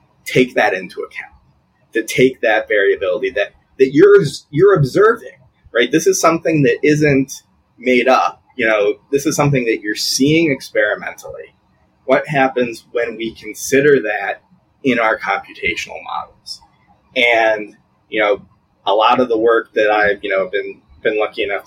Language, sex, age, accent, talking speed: English, male, 30-49, American, 155 wpm